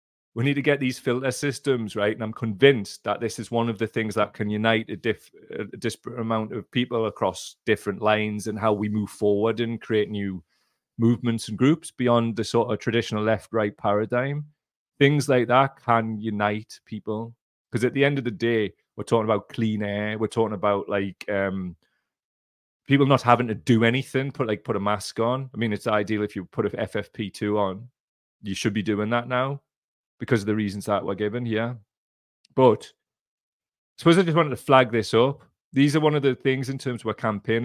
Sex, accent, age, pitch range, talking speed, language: male, British, 30-49, 105-125 Hz, 205 wpm, English